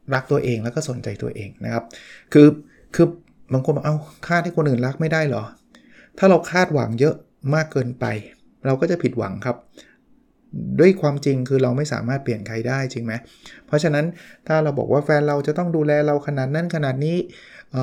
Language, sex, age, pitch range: Thai, male, 20-39, 125-155 Hz